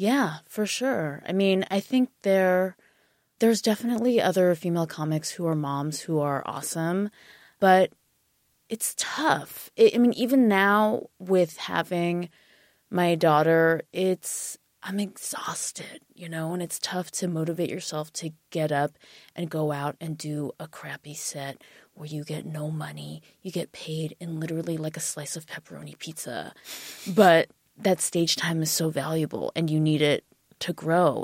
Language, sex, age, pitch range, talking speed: English, female, 20-39, 155-195 Hz, 160 wpm